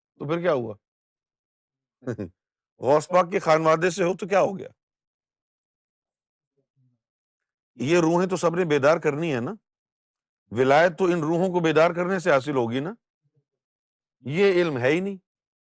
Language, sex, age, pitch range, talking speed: Urdu, male, 50-69, 130-165 Hz, 100 wpm